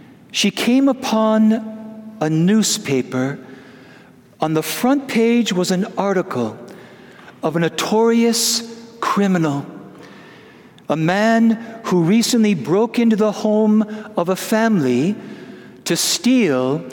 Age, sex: 50-69, male